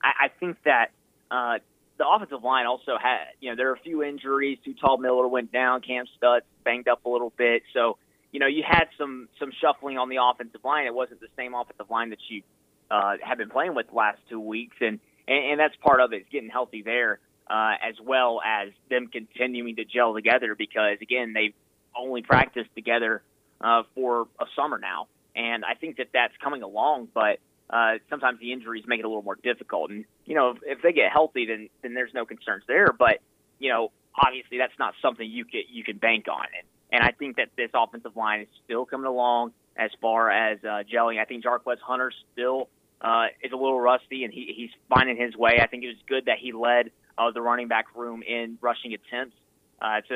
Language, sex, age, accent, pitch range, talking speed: English, male, 30-49, American, 115-125 Hz, 215 wpm